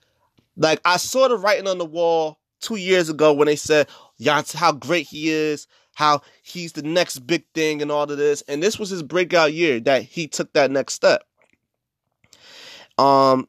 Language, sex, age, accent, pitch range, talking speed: English, male, 20-39, American, 145-220 Hz, 185 wpm